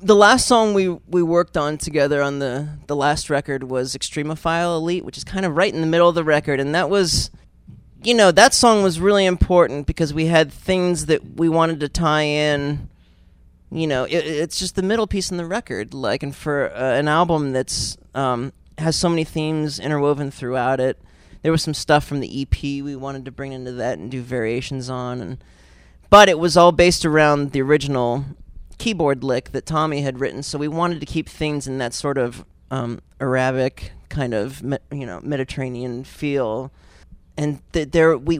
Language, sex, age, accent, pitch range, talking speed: English, male, 30-49, American, 130-165 Hz, 200 wpm